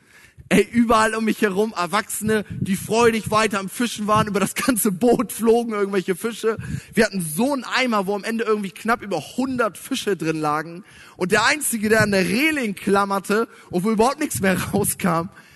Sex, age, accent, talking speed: male, 20-39, German, 185 wpm